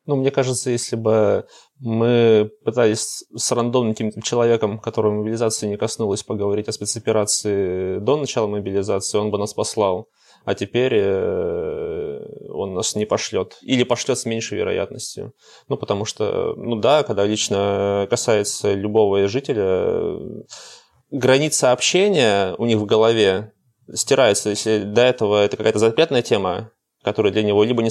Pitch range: 105-125 Hz